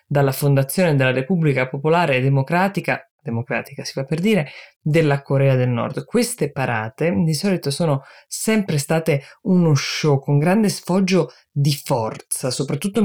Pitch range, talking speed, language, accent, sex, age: 135-170 Hz, 145 wpm, Italian, native, female, 20-39